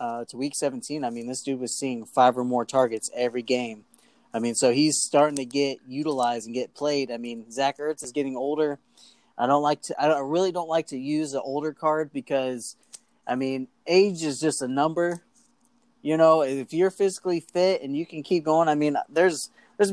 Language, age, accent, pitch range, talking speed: English, 20-39, American, 130-165 Hz, 215 wpm